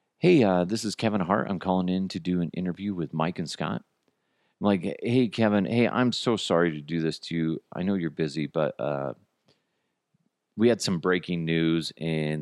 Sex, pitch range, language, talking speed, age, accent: male, 85-145 Hz, English, 205 wpm, 40-59, American